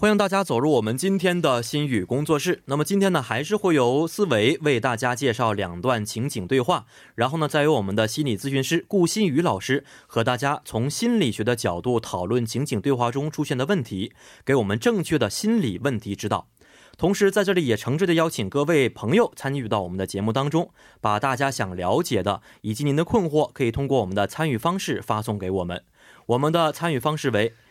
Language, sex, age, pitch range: Korean, male, 20-39, 110-160 Hz